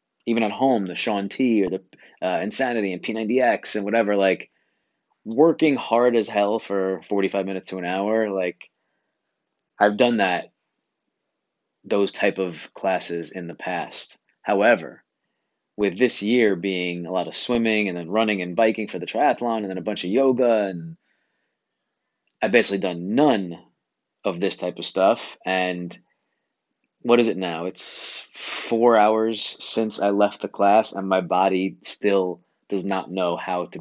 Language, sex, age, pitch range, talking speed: English, male, 30-49, 95-115 Hz, 160 wpm